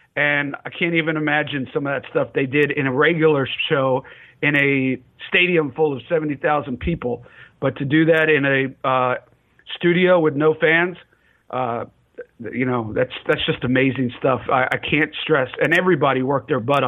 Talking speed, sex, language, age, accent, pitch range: 180 wpm, male, English, 50-69, American, 130-160 Hz